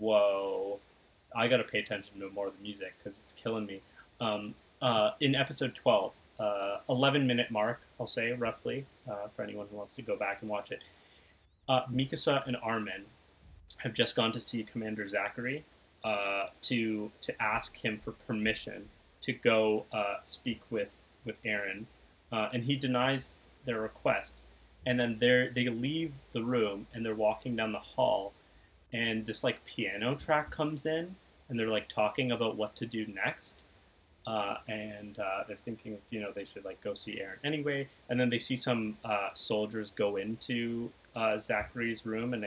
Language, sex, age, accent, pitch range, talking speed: English, male, 30-49, American, 100-125 Hz, 175 wpm